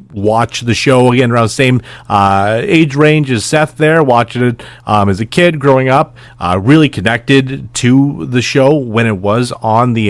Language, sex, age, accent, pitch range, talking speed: English, male, 30-49, American, 105-135 Hz, 190 wpm